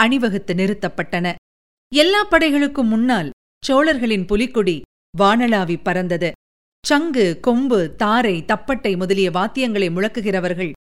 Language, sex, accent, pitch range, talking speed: Tamil, female, native, 190-270 Hz, 95 wpm